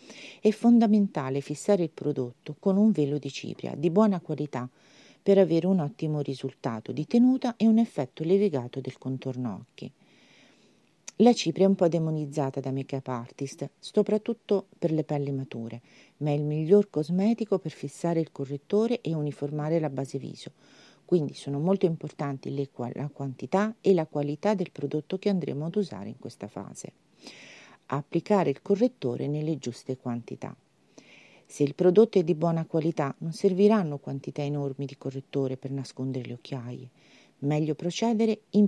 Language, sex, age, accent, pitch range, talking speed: Italian, female, 40-59, native, 135-200 Hz, 155 wpm